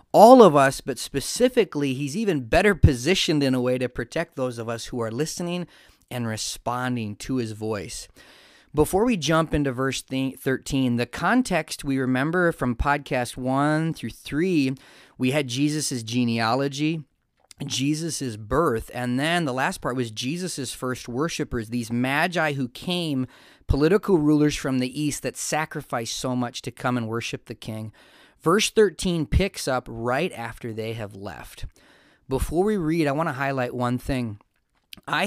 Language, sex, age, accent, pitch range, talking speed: English, male, 30-49, American, 125-155 Hz, 160 wpm